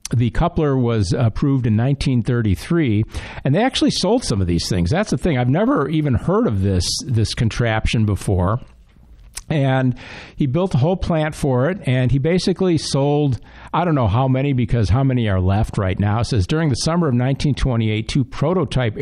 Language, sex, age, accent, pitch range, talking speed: English, male, 50-69, American, 110-145 Hz, 185 wpm